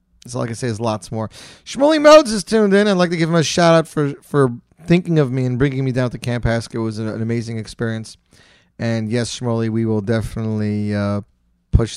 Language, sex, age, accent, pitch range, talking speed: English, male, 30-49, American, 105-150 Hz, 225 wpm